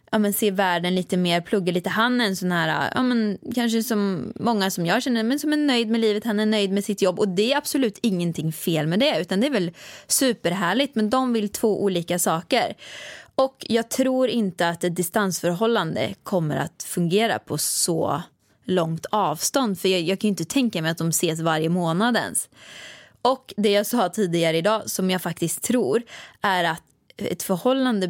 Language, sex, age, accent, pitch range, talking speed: Swedish, female, 20-39, native, 180-230 Hz, 190 wpm